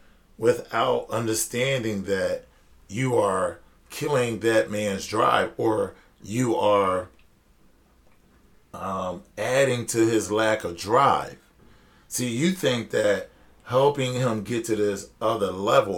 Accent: American